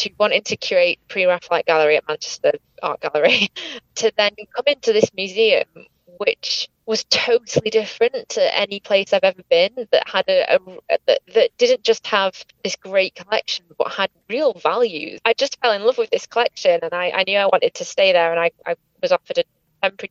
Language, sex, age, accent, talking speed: English, female, 20-39, British, 190 wpm